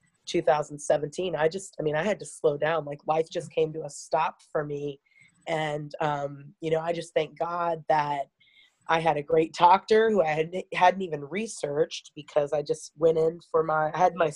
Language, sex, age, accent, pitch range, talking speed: English, female, 30-49, American, 150-180 Hz, 205 wpm